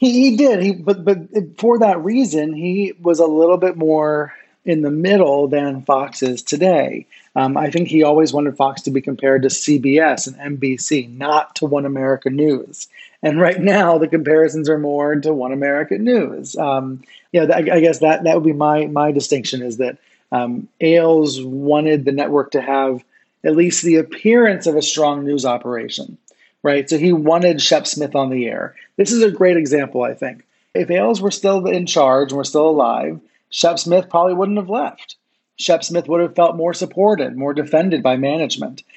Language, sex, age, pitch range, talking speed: English, male, 30-49, 140-170 Hz, 195 wpm